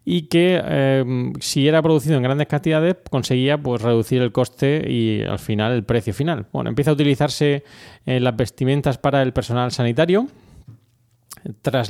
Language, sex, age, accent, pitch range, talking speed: Spanish, male, 20-39, Spanish, 115-145 Hz, 165 wpm